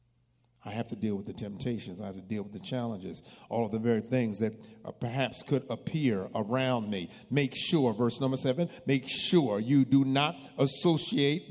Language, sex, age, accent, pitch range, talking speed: English, male, 50-69, American, 120-170 Hz, 195 wpm